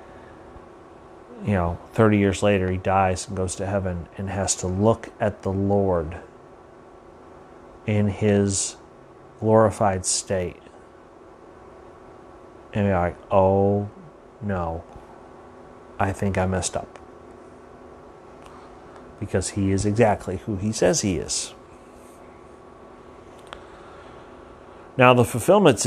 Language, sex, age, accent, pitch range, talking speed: English, male, 30-49, American, 95-110 Hz, 100 wpm